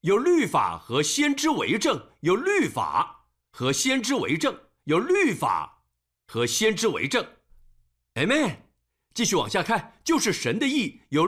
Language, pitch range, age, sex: Chinese, 220-300 Hz, 50-69, male